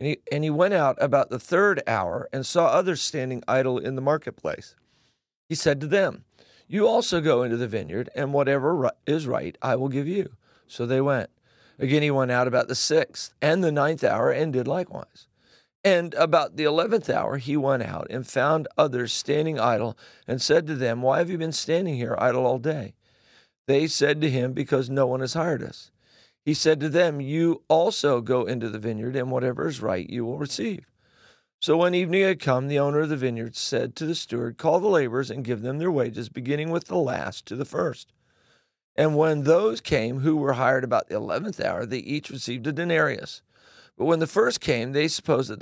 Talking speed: 210 wpm